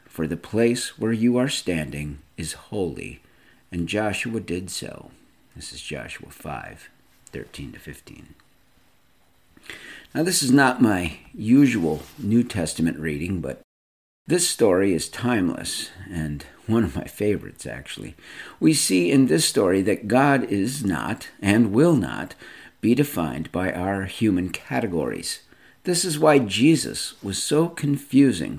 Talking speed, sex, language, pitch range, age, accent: 130 wpm, male, English, 90-130 Hz, 50-69, American